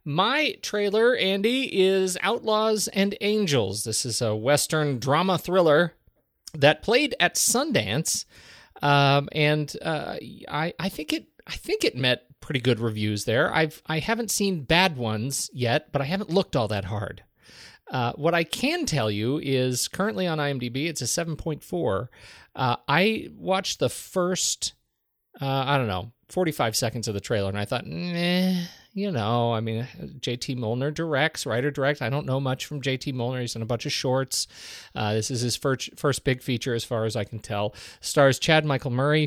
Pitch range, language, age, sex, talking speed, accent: 110-155 Hz, English, 30-49, male, 180 wpm, American